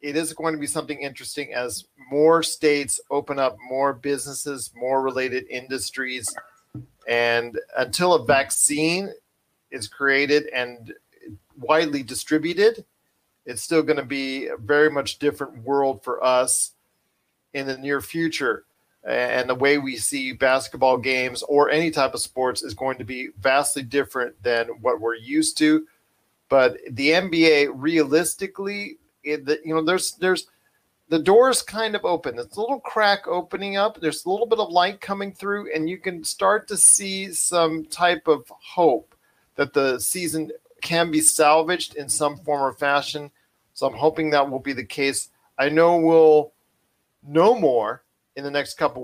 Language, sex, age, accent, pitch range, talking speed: English, male, 40-59, American, 135-165 Hz, 160 wpm